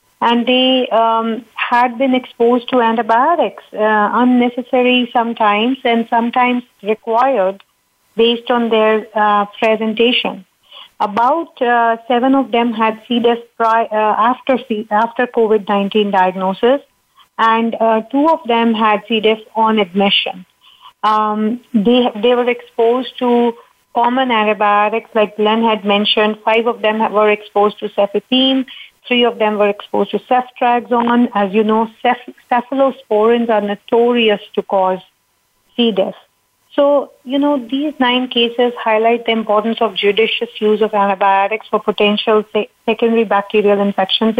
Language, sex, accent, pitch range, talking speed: English, female, Indian, 210-245 Hz, 135 wpm